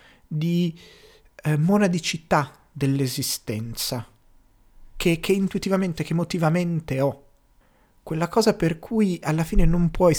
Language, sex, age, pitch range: Italian, male, 30-49, 120-160 Hz